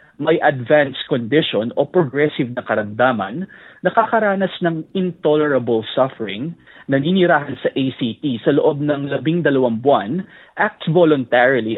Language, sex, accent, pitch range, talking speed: Filipino, male, native, 135-175 Hz, 115 wpm